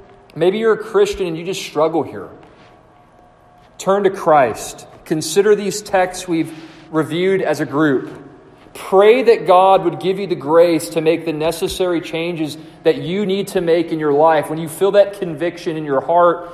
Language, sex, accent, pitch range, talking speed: English, male, American, 160-185 Hz, 180 wpm